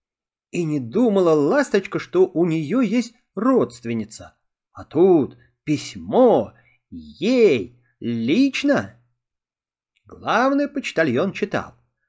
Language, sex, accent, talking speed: Russian, male, native, 85 wpm